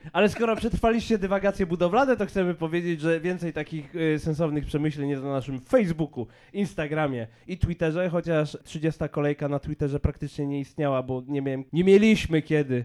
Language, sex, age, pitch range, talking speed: Polish, male, 20-39, 130-165 Hz, 155 wpm